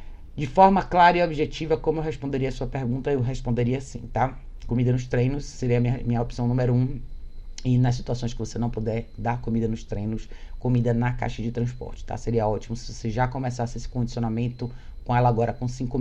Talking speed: 200 wpm